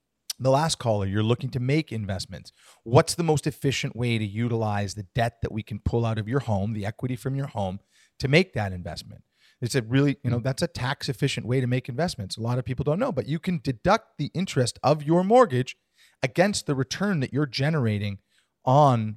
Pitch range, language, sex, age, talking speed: 110-155 Hz, English, male, 40-59, 215 wpm